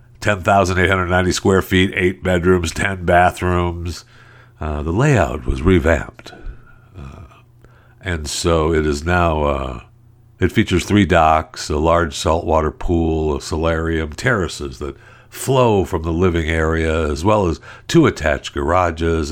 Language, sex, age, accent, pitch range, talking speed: English, male, 60-79, American, 80-110 Hz, 130 wpm